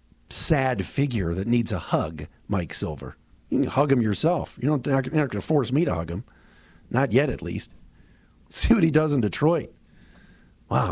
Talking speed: 190 wpm